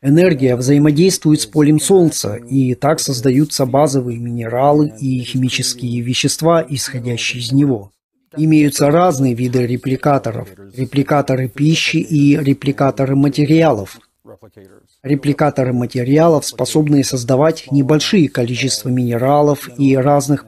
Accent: native